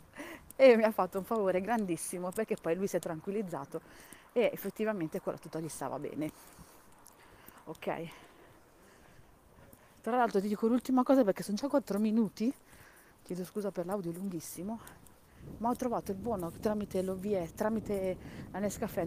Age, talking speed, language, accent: 40-59, 150 wpm, Italian, native